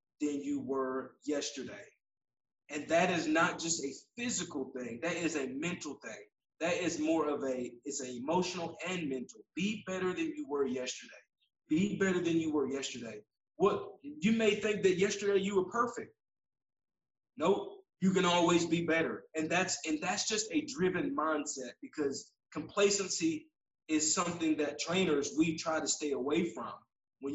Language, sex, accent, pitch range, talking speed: English, male, American, 140-195 Hz, 160 wpm